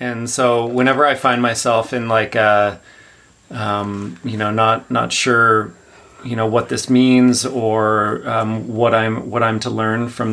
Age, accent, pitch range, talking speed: 30-49, American, 110-125 Hz, 170 wpm